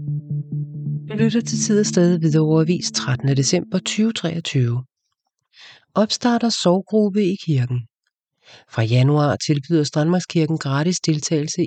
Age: 40-59